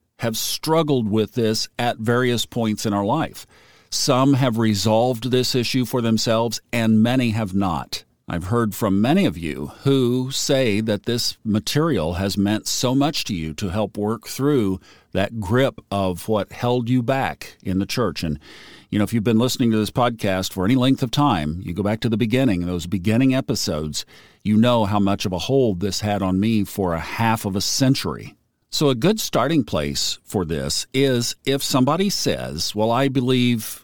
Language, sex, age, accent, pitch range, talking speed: English, male, 50-69, American, 105-130 Hz, 190 wpm